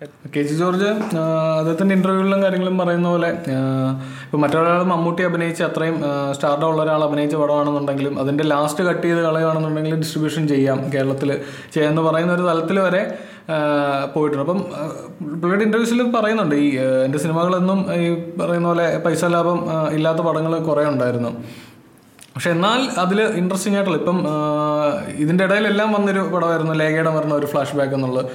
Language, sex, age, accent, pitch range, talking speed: Malayalam, male, 20-39, native, 145-175 Hz, 130 wpm